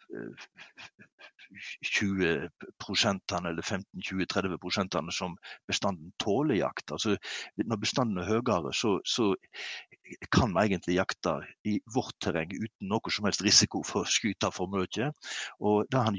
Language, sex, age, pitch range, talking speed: English, male, 60-79, 95-115 Hz, 135 wpm